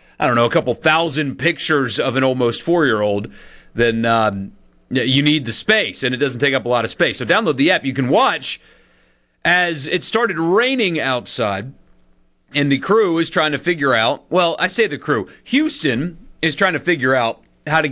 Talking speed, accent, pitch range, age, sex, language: 200 wpm, American, 110-155 Hz, 30-49, male, English